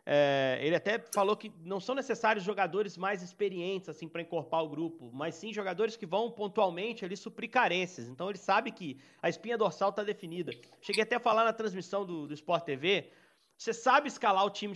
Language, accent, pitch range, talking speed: Portuguese, Brazilian, 175-225 Hz, 200 wpm